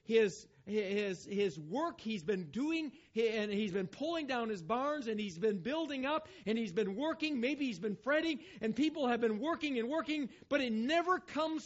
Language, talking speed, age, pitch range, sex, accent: English, 195 wpm, 50-69, 150-225 Hz, male, American